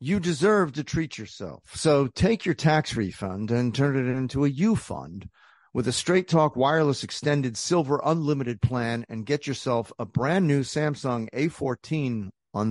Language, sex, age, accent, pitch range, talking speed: English, male, 50-69, American, 120-155 Hz, 160 wpm